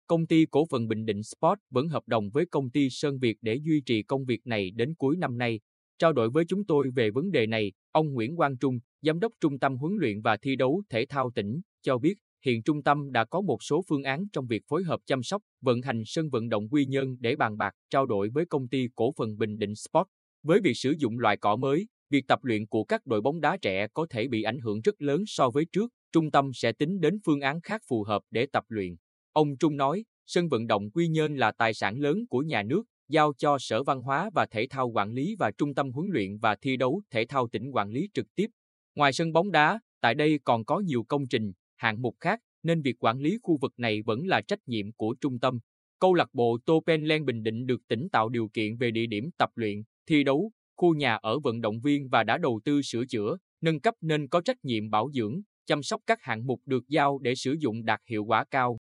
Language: Vietnamese